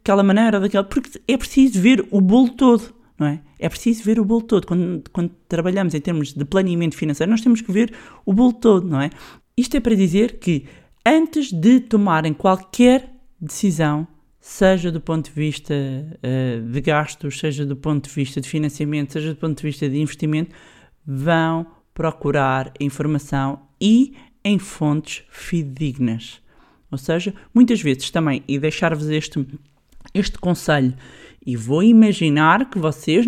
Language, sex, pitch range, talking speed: Portuguese, male, 145-215 Hz, 155 wpm